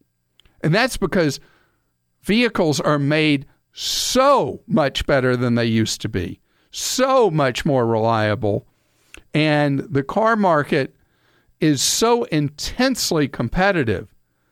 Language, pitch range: English, 110-175 Hz